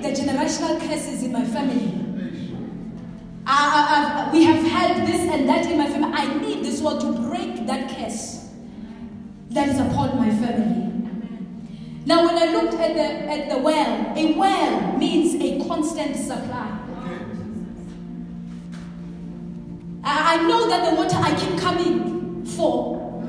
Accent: South African